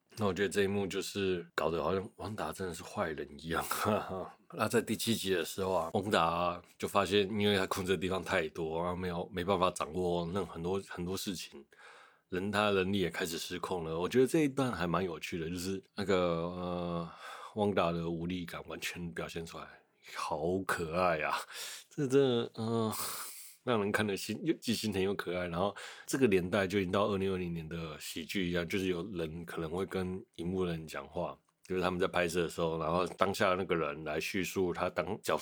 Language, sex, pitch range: Chinese, male, 85-100 Hz